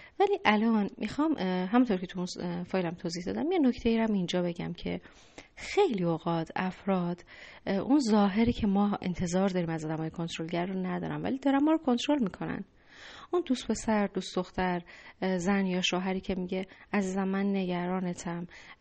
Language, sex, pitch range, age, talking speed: Persian, female, 180-210 Hz, 30-49, 155 wpm